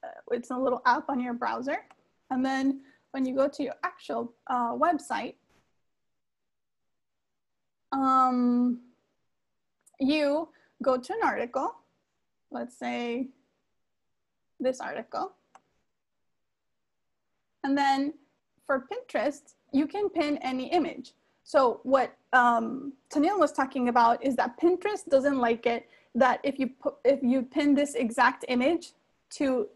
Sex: female